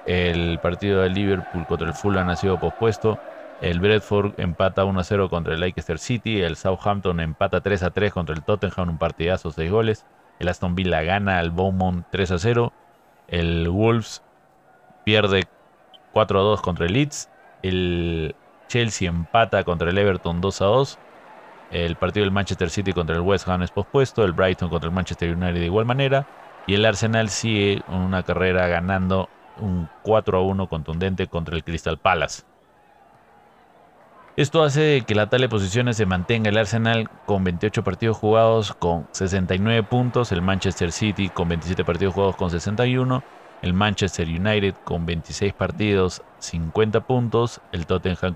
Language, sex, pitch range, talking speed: Spanish, male, 90-110 Hz, 165 wpm